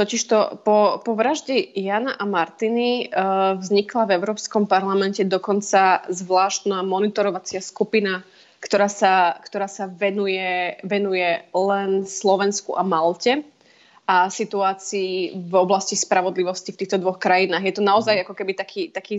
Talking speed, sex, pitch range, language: 130 wpm, female, 190-215 Hz, Slovak